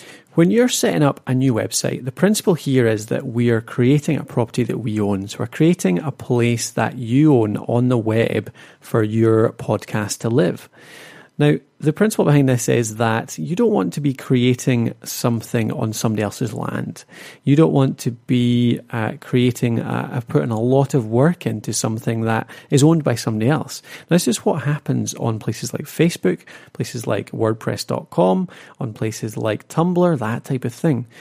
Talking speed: 180 wpm